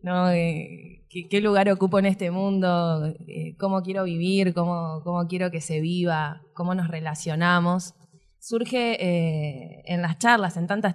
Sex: female